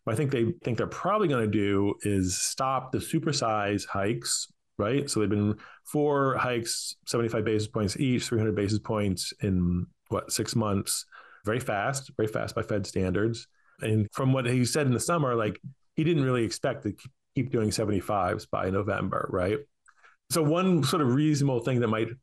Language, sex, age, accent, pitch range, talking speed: English, male, 30-49, American, 100-130 Hz, 180 wpm